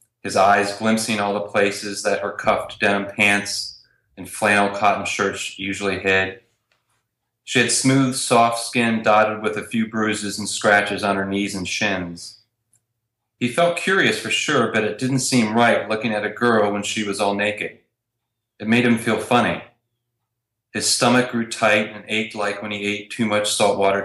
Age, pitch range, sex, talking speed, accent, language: 30-49, 100-120 Hz, male, 175 wpm, American, English